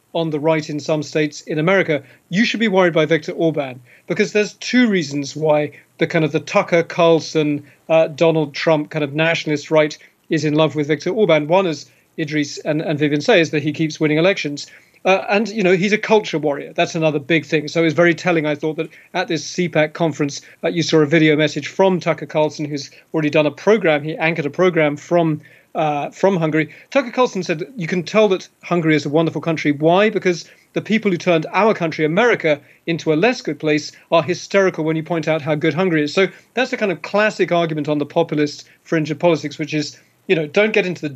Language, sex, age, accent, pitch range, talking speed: English, male, 40-59, British, 155-180 Hz, 225 wpm